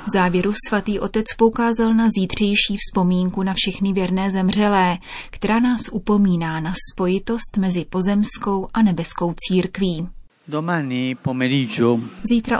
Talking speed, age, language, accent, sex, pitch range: 105 wpm, 30-49, Czech, native, female, 175-200 Hz